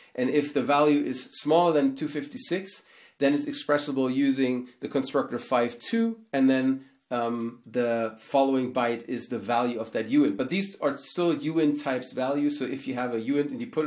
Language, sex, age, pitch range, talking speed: English, male, 30-49, 120-150 Hz, 185 wpm